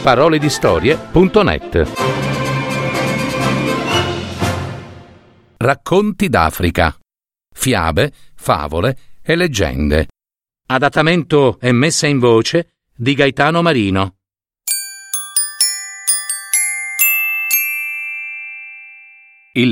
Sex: male